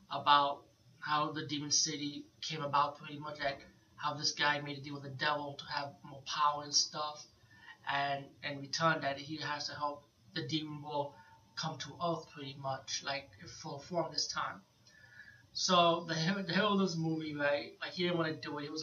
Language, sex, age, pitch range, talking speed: English, male, 30-49, 145-160 Hz, 205 wpm